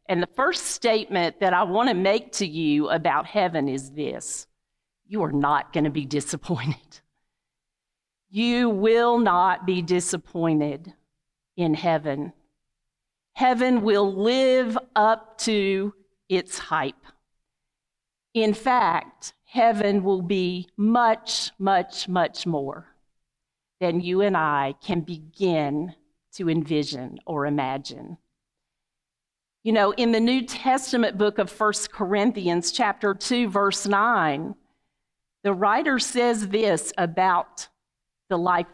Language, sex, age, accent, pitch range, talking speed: English, female, 50-69, American, 155-220 Hz, 120 wpm